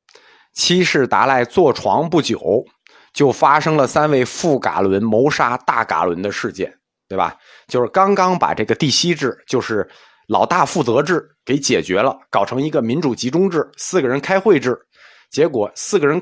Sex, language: male, Chinese